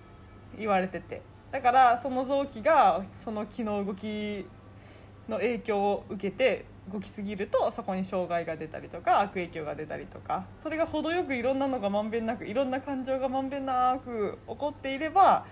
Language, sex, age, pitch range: Japanese, female, 20-39, 160-235 Hz